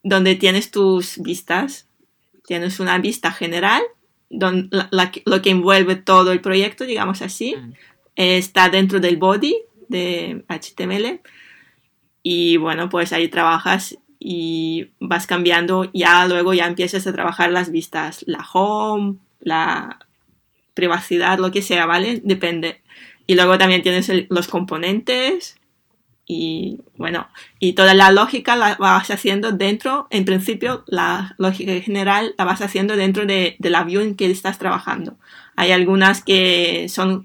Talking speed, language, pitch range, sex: 135 wpm, Spanish, 175-195 Hz, female